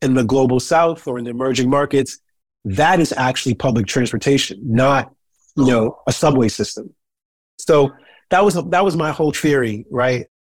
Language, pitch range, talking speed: English, 120-145 Hz, 165 wpm